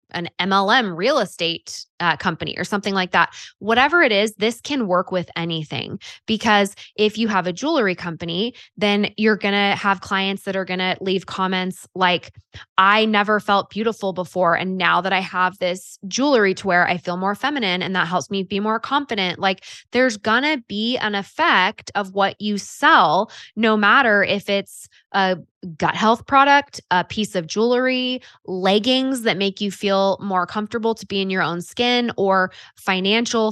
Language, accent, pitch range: English, American, 180-215 Hz